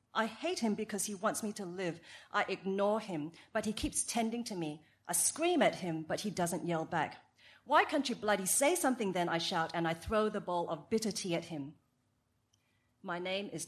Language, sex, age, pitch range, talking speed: English, female, 40-59, 160-215 Hz, 215 wpm